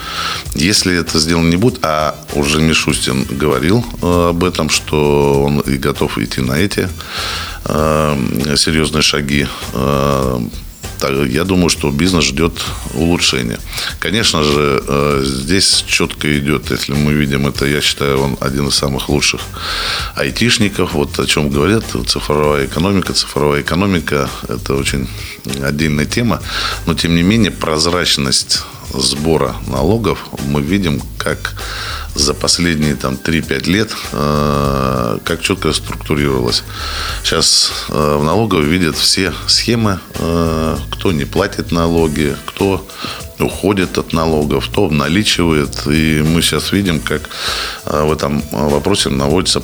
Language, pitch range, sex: Russian, 70-85 Hz, male